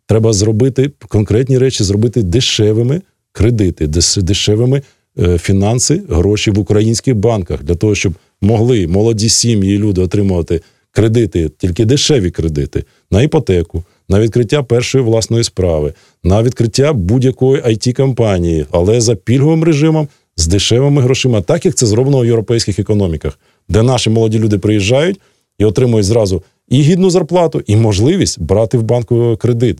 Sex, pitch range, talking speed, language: male, 100-130 Hz, 135 wpm, Russian